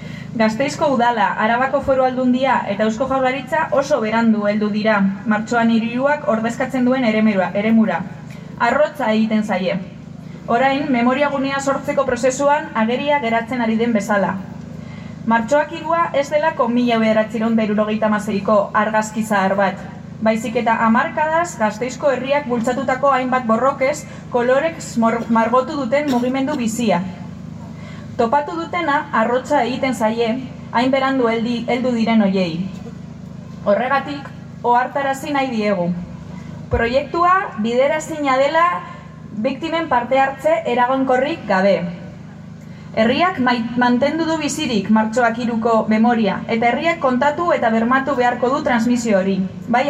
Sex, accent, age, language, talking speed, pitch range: female, Spanish, 20-39, Spanish, 115 wpm, 205-270 Hz